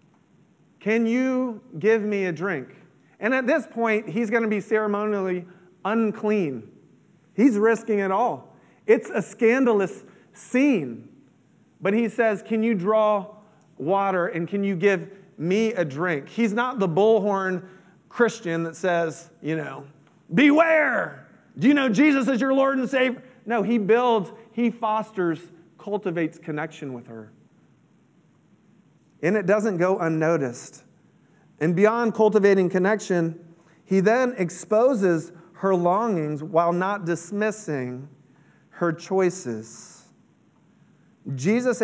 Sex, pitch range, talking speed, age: male, 165-220 Hz, 125 wpm, 40-59